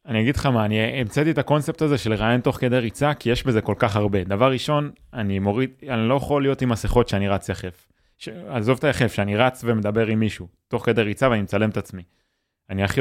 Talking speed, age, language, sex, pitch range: 230 wpm, 20-39, Hebrew, male, 105-130 Hz